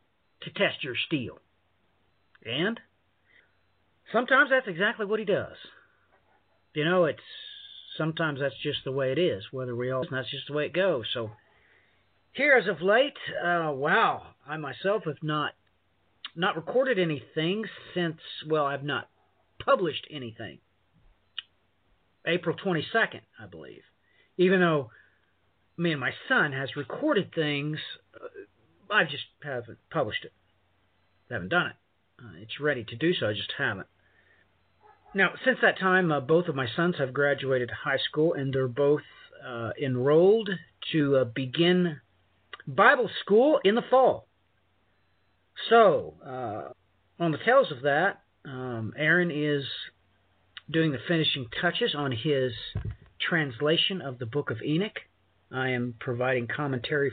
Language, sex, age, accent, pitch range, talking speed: English, male, 50-69, American, 115-170 Hz, 140 wpm